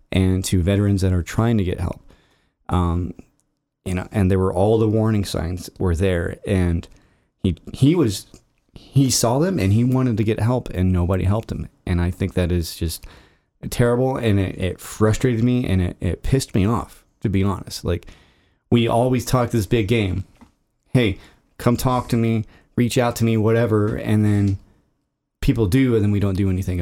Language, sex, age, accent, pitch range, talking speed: English, male, 30-49, American, 95-115 Hz, 190 wpm